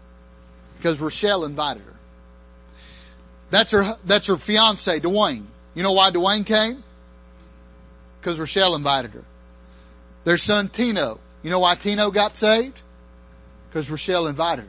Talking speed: 125 wpm